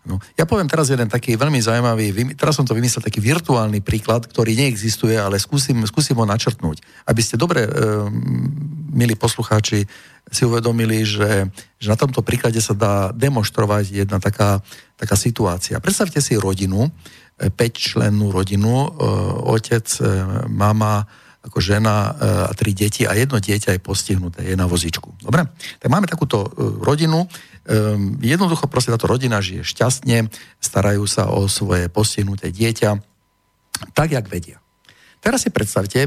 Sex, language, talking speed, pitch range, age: male, Slovak, 140 wpm, 100-130 Hz, 50-69